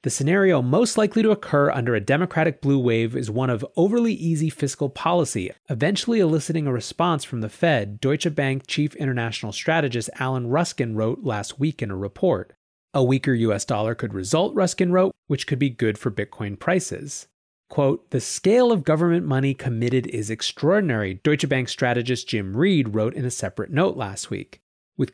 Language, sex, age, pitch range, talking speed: English, male, 30-49, 120-160 Hz, 180 wpm